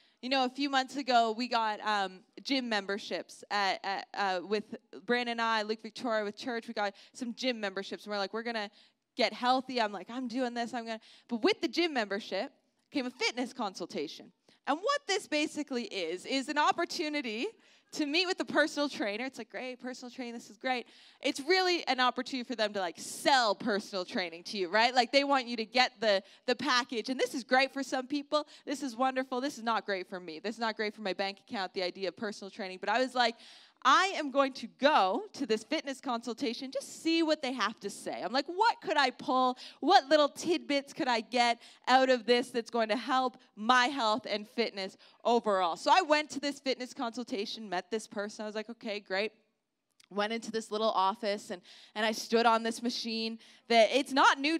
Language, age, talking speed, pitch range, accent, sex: English, 20-39, 220 wpm, 215-275 Hz, American, female